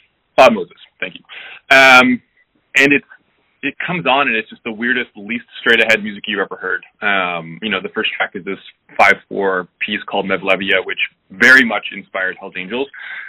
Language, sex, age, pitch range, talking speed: English, male, 20-39, 95-115 Hz, 175 wpm